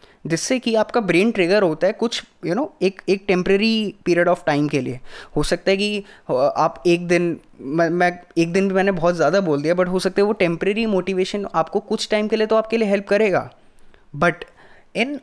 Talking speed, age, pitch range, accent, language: 220 wpm, 20-39, 165-215 Hz, native, Hindi